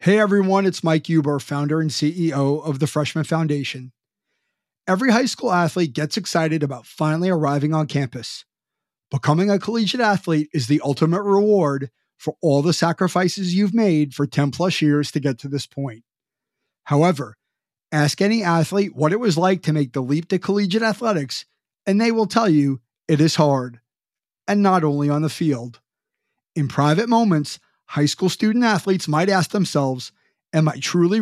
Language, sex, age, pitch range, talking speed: English, male, 30-49, 145-190 Hz, 165 wpm